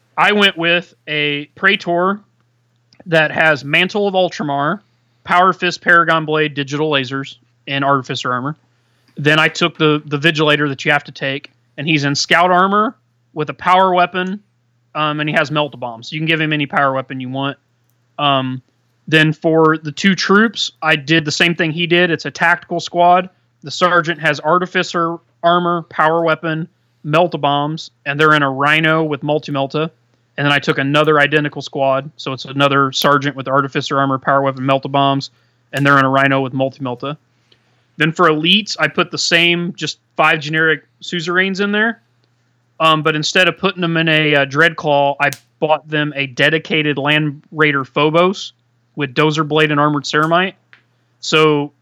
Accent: American